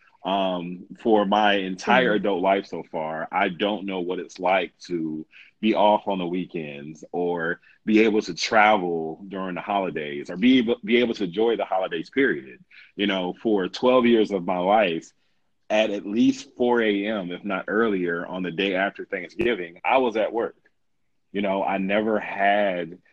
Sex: male